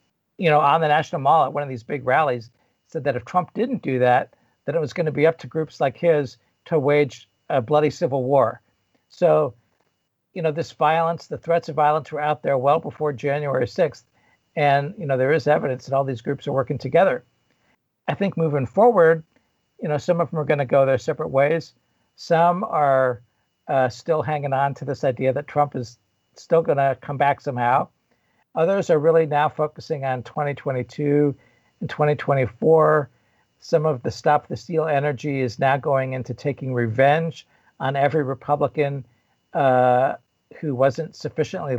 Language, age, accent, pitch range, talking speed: English, 60-79, American, 125-150 Hz, 185 wpm